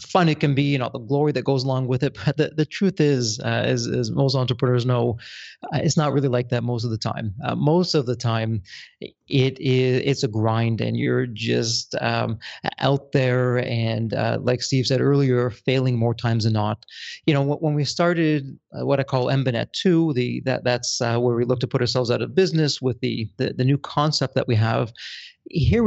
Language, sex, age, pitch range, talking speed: English, male, 30-49, 120-145 Hz, 215 wpm